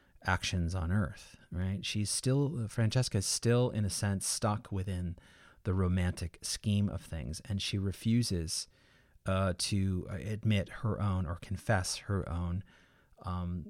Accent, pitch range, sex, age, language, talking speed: American, 90-105 Hz, male, 30-49, English, 140 wpm